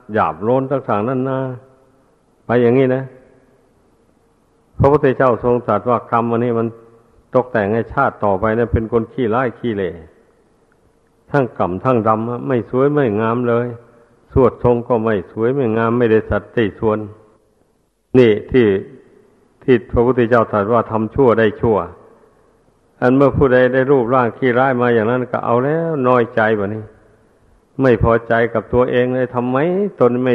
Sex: male